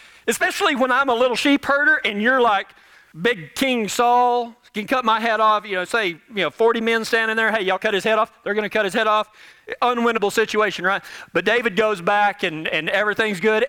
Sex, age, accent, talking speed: male, 40-59, American, 225 wpm